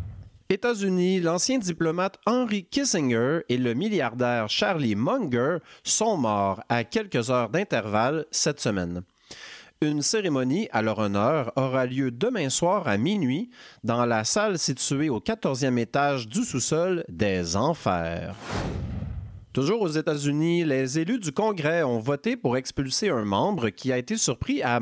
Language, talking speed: French, 140 wpm